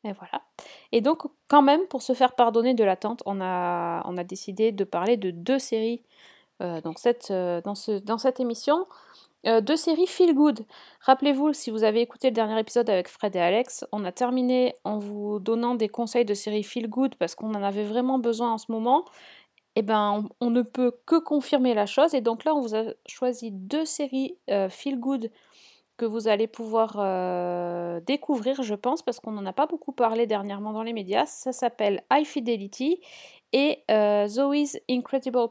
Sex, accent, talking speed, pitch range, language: female, French, 200 wpm, 210-265 Hz, French